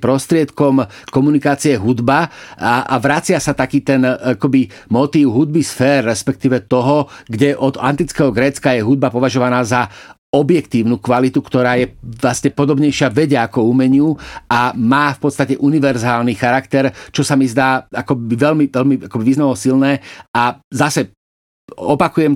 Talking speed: 130 wpm